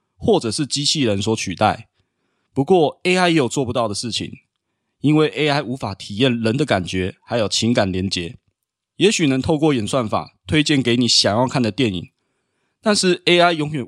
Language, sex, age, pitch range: Chinese, male, 20-39, 105-150 Hz